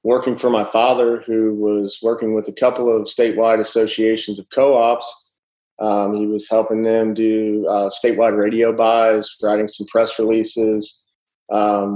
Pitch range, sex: 110-120 Hz, male